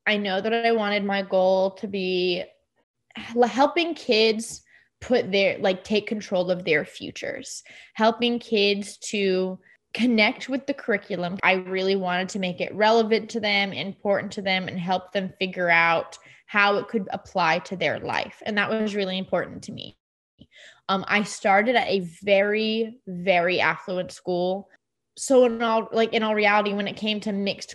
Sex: female